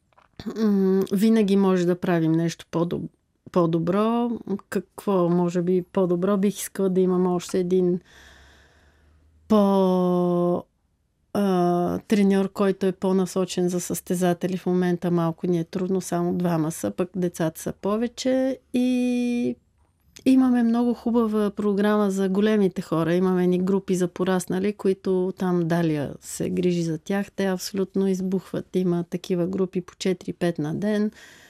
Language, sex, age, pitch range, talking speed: Bulgarian, female, 30-49, 180-210 Hz, 125 wpm